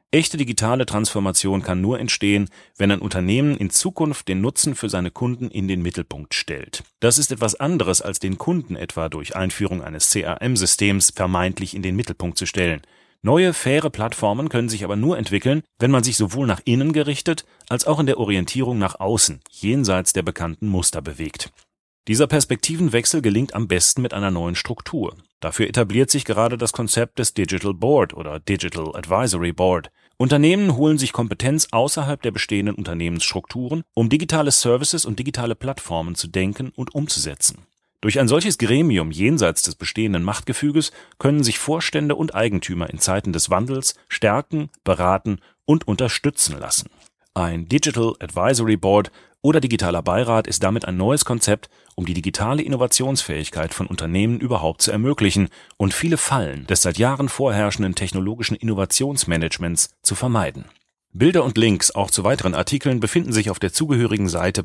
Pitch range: 95-135 Hz